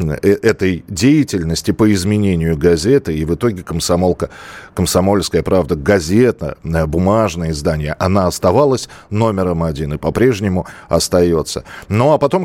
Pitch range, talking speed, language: 85-105 Hz, 115 wpm, Russian